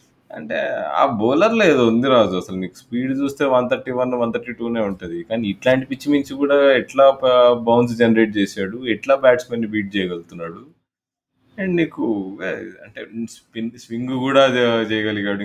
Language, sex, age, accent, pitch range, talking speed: Telugu, male, 20-39, native, 95-125 Hz, 145 wpm